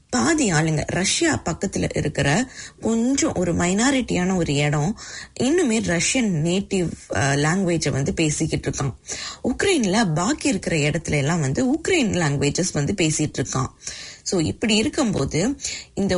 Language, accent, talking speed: English, Indian, 110 wpm